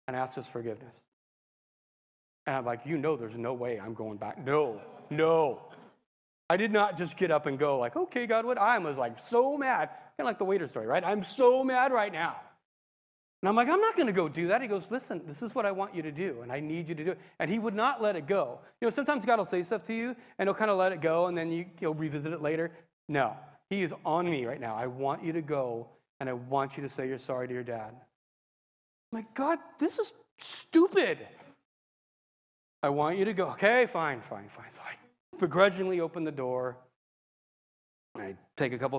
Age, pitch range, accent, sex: 30-49, 135-205 Hz, American, male